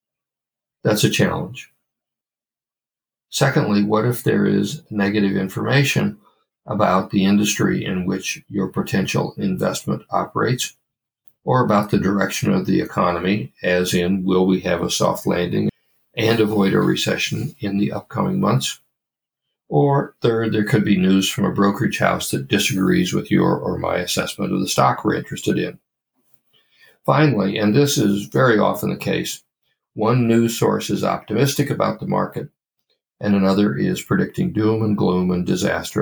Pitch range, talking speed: 95-115 Hz, 150 wpm